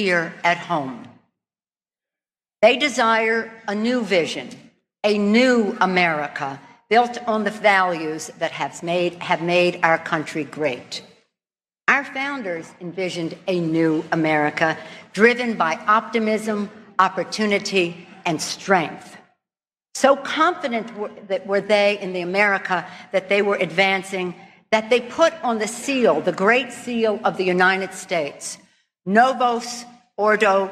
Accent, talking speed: American, 125 wpm